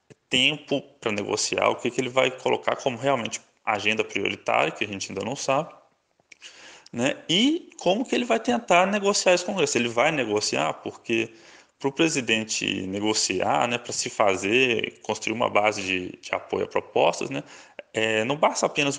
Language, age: Portuguese, 20-39